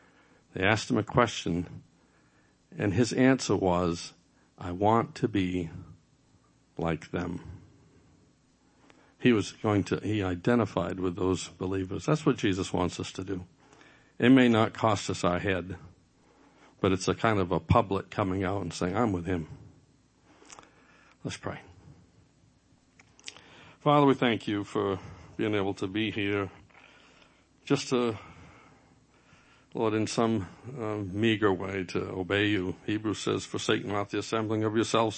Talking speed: 140 wpm